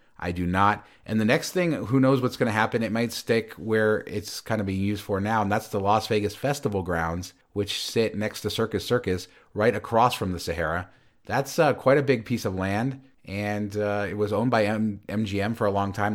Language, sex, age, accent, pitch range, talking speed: English, male, 30-49, American, 95-115 Hz, 225 wpm